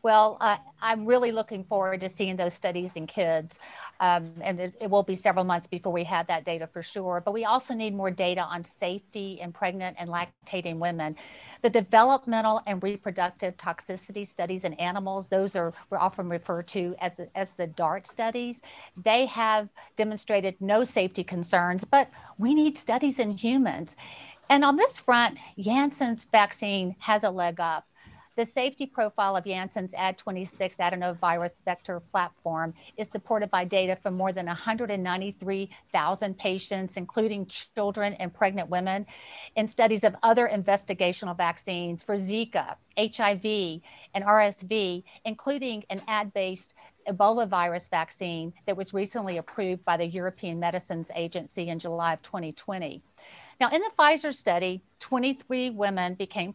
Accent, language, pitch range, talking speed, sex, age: American, English, 180-215 Hz, 150 wpm, female, 50-69